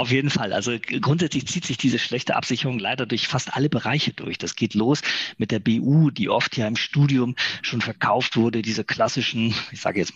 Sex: male